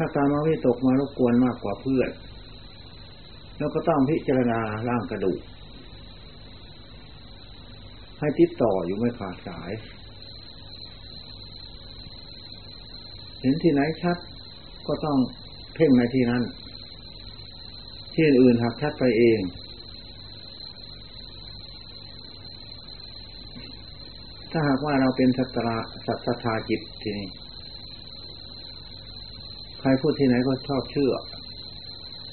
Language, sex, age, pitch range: Thai, male, 60-79, 105-120 Hz